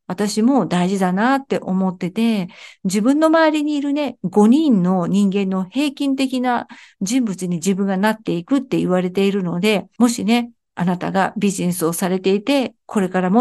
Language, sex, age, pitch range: Japanese, female, 50-69, 190-245 Hz